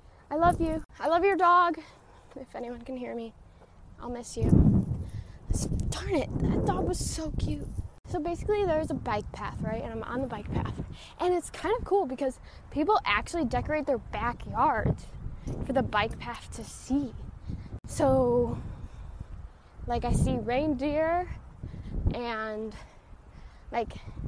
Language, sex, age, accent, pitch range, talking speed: English, female, 10-29, American, 235-330 Hz, 145 wpm